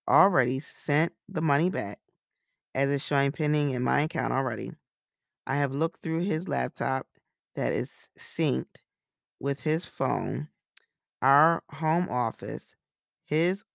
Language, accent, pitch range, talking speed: English, American, 130-160 Hz, 125 wpm